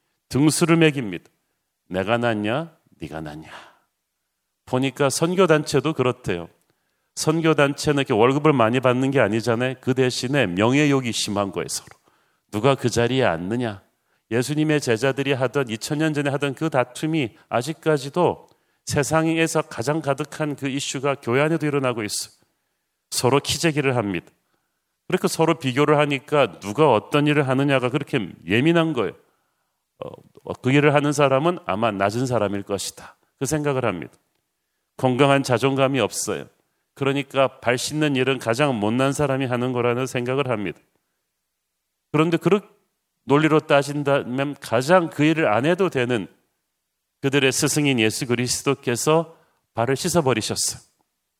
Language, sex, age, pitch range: Korean, male, 40-59, 120-150 Hz